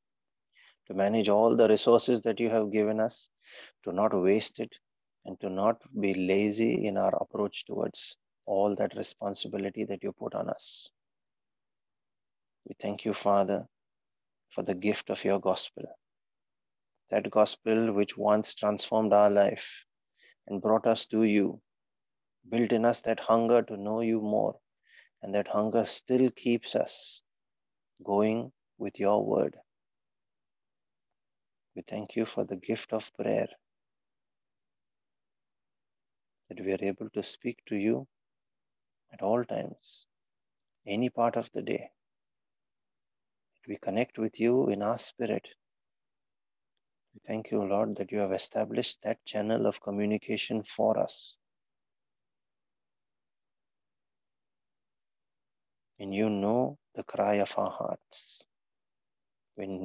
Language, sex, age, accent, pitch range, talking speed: English, male, 30-49, Indian, 100-115 Hz, 125 wpm